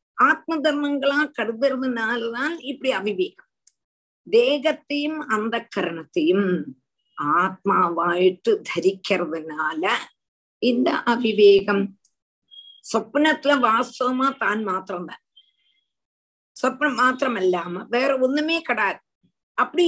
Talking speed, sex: 65 wpm, female